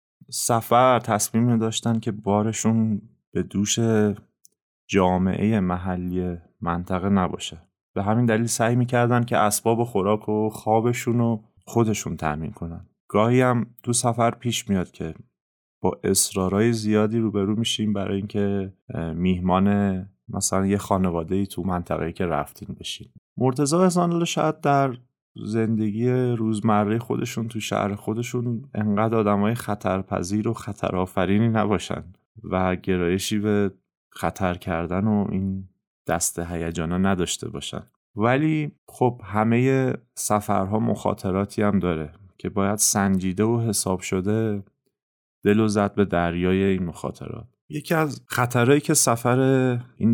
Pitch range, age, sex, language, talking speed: 95-115 Hz, 30-49, male, Persian, 125 wpm